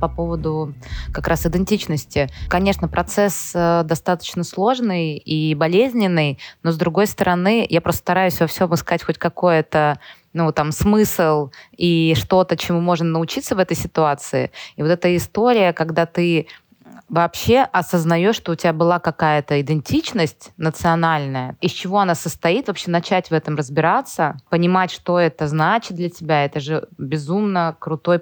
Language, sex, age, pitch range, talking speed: Russian, female, 20-39, 155-180 Hz, 140 wpm